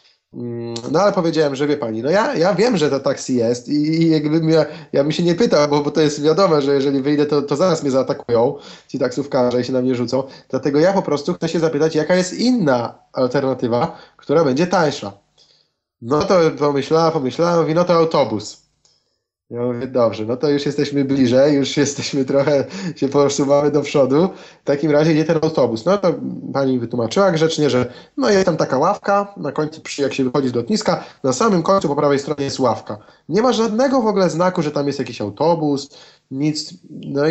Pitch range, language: 125-165 Hz, Polish